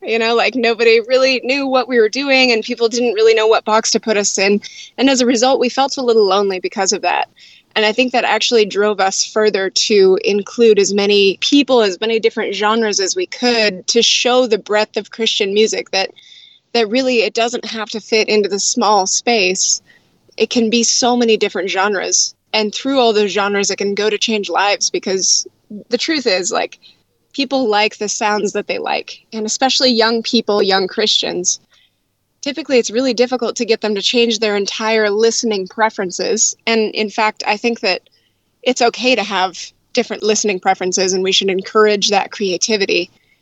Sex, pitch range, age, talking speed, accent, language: female, 200-235 Hz, 20-39, 195 wpm, American, English